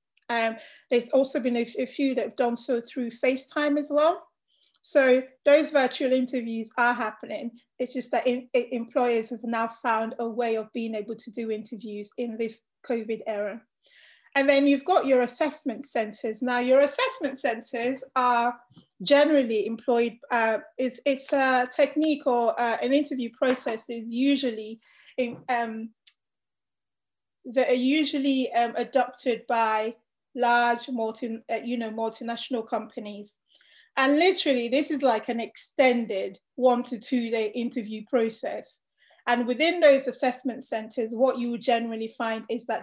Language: English